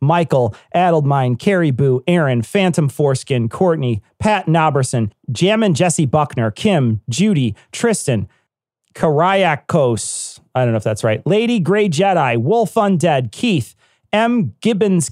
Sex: male